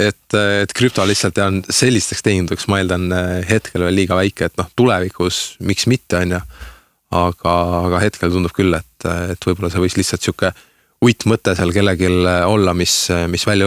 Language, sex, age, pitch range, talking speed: English, male, 20-39, 90-110 Hz, 165 wpm